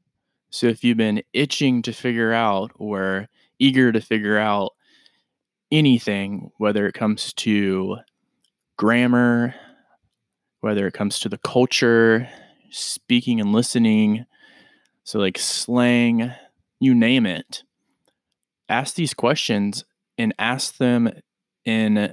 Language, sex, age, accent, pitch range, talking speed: English, male, 20-39, American, 105-125 Hz, 110 wpm